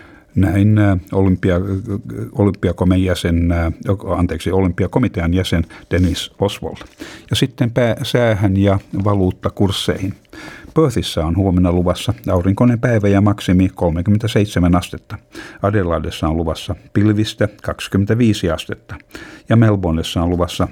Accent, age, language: native, 50-69, Finnish